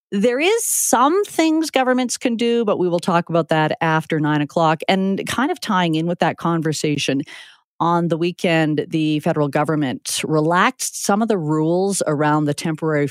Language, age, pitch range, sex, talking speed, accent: English, 40-59, 150-185 Hz, female, 175 wpm, American